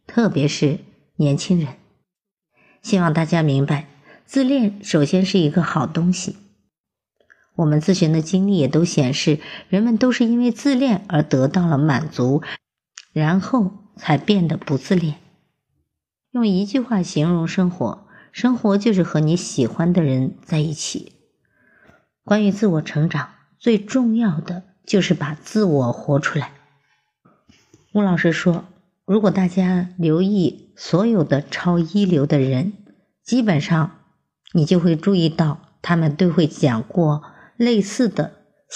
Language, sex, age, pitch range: Chinese, male, 50-69, 150-200 Hz